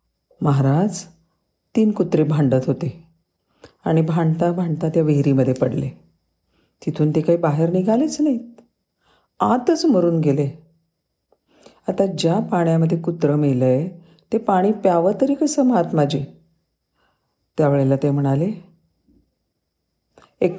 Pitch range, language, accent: 145-185 Hz, Marathi, native